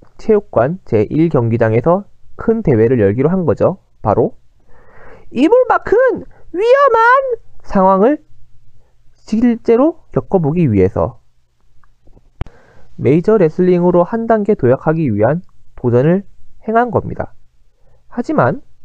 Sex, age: male, 20-39